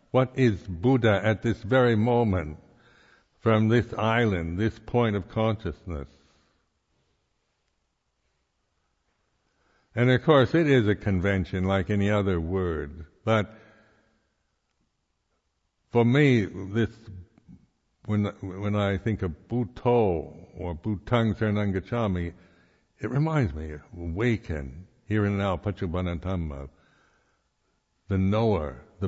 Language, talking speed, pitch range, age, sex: English, 100 wpm, 85-110 Hz, 60-79, male